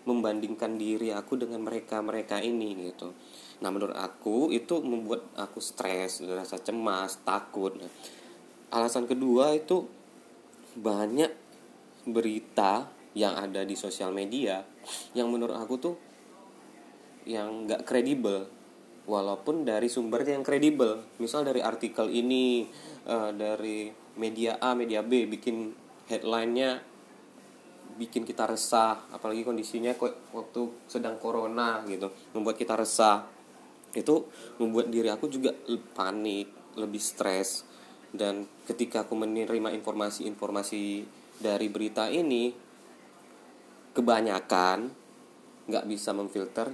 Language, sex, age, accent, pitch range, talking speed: Indonesian, male, 20-39, native, 105-120 Hz, 105 wpm